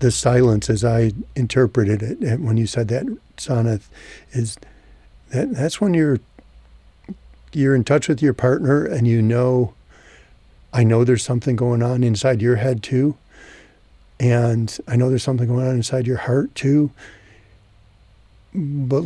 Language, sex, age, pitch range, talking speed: English, male, 50-69, 115-135 Hz, 145 wpm